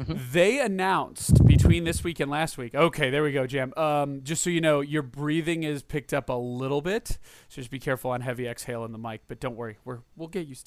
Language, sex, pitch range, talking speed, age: English, male, 135-170 Hz, 235 wpm, 30-49